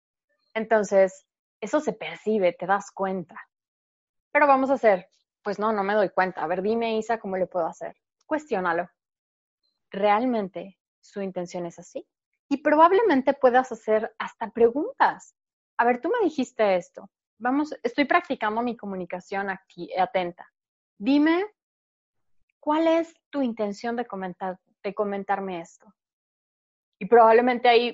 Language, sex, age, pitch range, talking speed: Spanish, female, 20-39, 195-255 Hz, 135 wpm